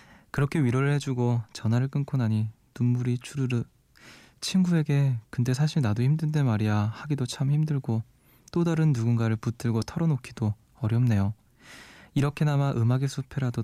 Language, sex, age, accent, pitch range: Korean, male, 20-39, native, 115-145 Hz